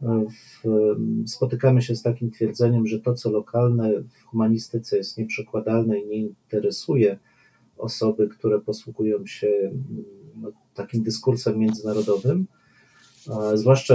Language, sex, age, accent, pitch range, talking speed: Polish, male, 40-59, native, 110-130 Hz, 105 wpm